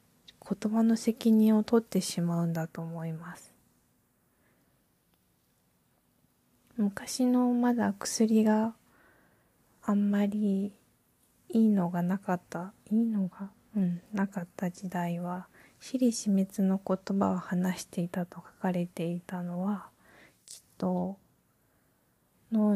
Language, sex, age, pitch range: Japanese, female, 20-39, 180-210 Hz